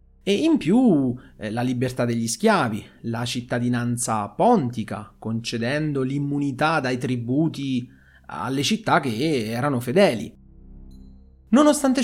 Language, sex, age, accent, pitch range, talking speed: Italian, male, 30-49, native, 115-160 Hz, 100 wpm